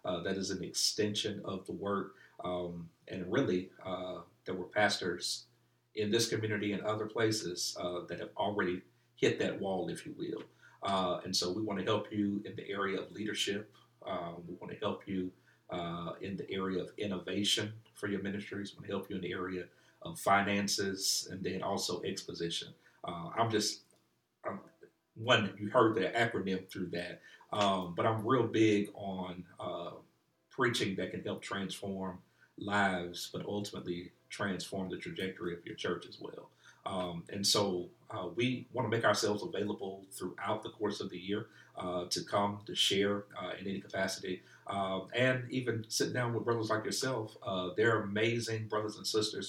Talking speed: 175 wpm